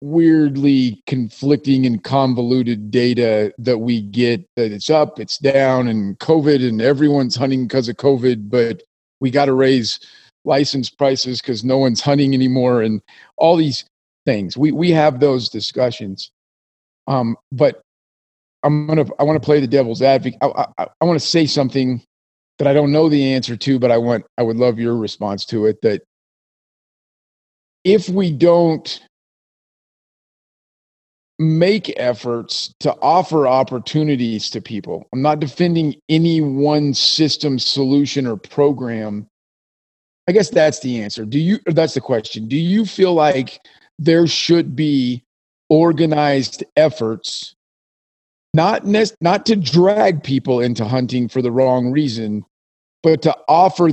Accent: American